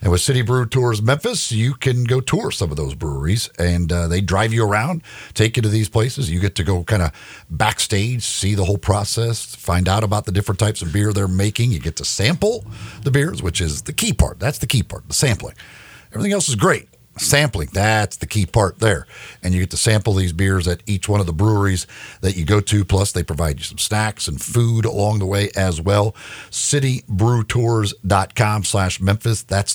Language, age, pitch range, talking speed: English, 50-69, 90-110 Hz, 215 wpm